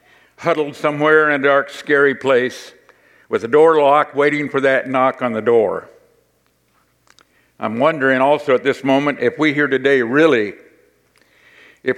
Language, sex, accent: English, male, American